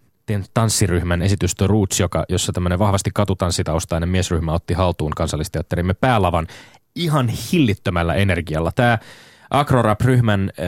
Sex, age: male, 20-39